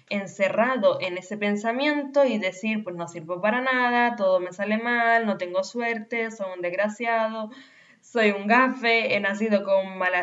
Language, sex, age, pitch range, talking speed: Spanish, female, 10-29, 190-245 Hz, 165 wpm